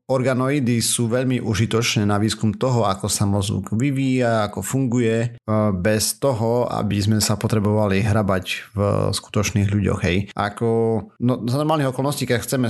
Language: Slovak